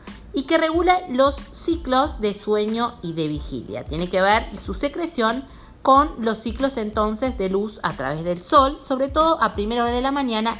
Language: Spanish